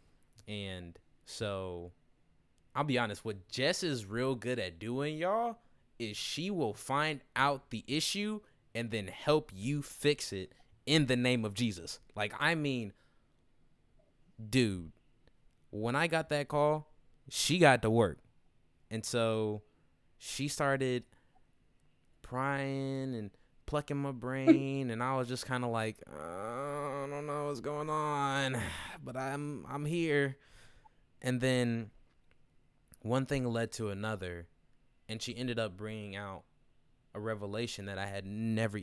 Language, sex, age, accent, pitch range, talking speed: English, male, 20-39, American, 100-135 Hz, 140 wpm